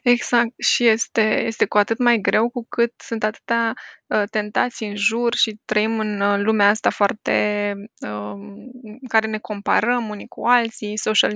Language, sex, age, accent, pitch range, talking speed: Romanian, female, 20-39, native, 210-240 Hz, 170 wpm